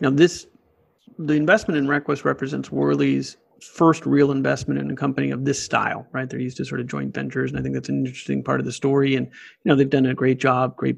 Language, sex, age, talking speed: English, male, 40-59, 240 wpm